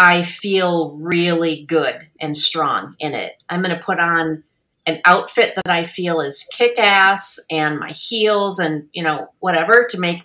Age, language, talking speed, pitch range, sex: 40-59, English, 170 wpm, 170-210 Hz, female